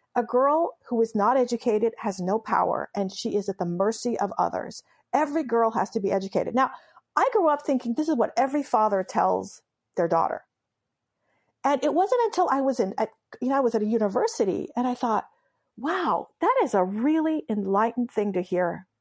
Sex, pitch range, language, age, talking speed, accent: female, 210-290 Hz, English, 50-69, 195 wpm, American